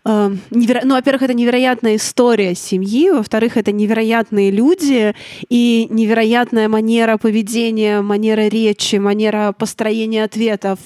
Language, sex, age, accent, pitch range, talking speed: Russian, female, 20-39, native, 210-235 Hz, 115 wpm